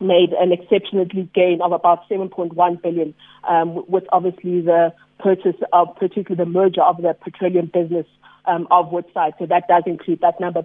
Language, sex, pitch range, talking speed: English, female, 175-185 Hz, 170 wpm